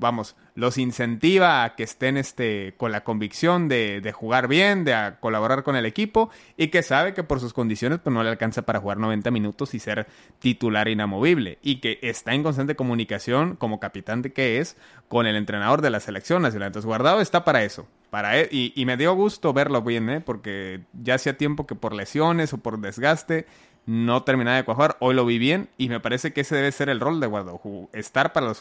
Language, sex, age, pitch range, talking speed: Spanish, male, 30-49, 115-160 Hz, 220 wpm